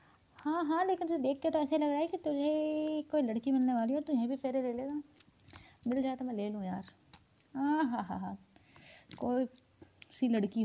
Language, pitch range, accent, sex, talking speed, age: Hindi, 210-300 Hz, native, female, 210 wpm, 20-39